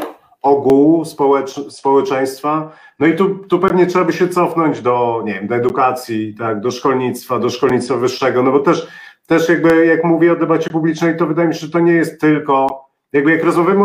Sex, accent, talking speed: male, native, 195 wpm